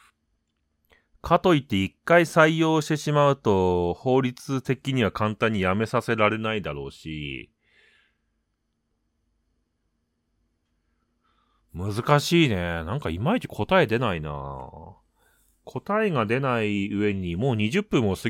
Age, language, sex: 30-49, Japanese, male